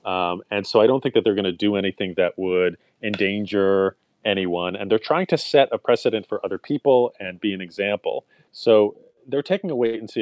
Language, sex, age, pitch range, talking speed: English, male, 30-49, 95-125 Hz, 215 wpm